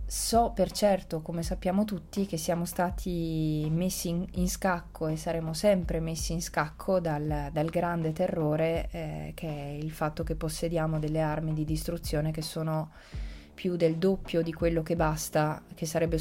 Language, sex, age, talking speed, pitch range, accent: Italian, female, 20-39, 165 wpm, 155-180 Hz, native